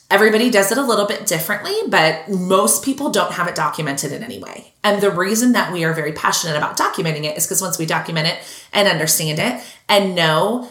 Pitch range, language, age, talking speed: 160-215 Hz, English, 30-49, 220 wpm